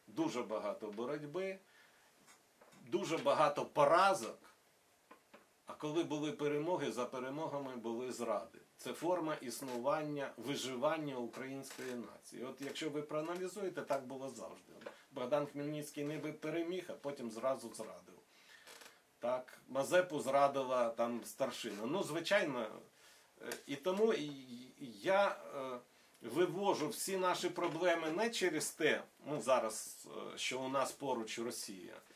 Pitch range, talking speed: 130-175 Hz, 110 wpm